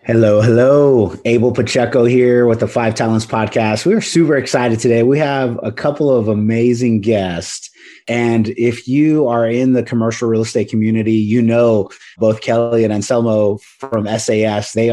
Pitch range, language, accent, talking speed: 110-125 Hz, English, American, 160 wpm